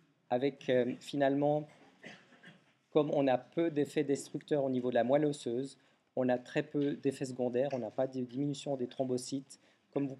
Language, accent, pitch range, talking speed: French, French, 125-145 Hz, 175 wpm